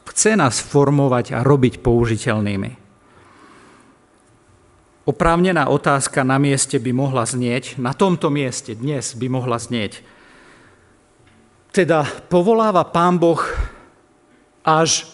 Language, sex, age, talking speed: Slovak, male, 50-69, 100 wpm